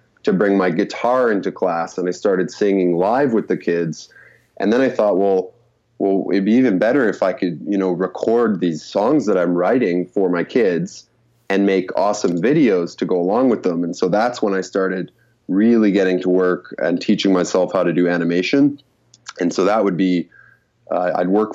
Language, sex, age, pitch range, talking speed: English, male, 20-39, 90-105 Hz, 200 wpm